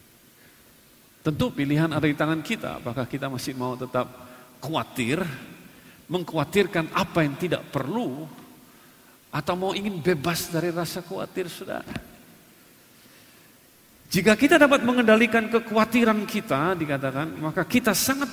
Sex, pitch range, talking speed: male, 165-230 Hz, 115 wpm